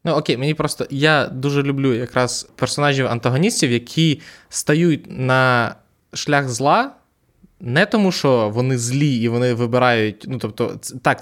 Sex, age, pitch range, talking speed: male, 20-39, 120-155 Hz, 135 wpm